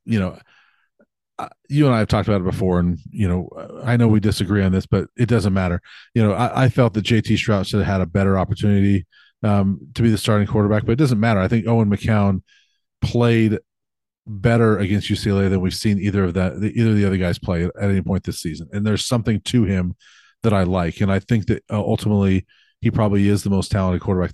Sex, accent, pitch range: male, American, 95-115 Hz